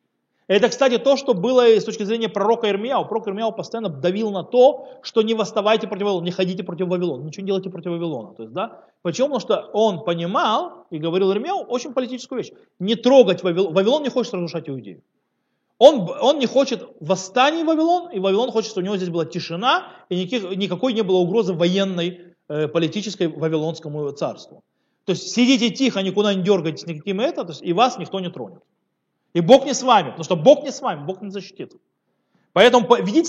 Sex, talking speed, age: male, 195 wpm, 30-49